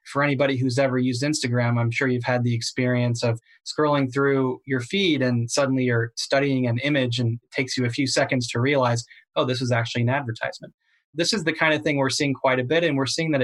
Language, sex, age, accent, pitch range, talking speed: English, male, 20-39, American, 120-140 Hz, 235 wpm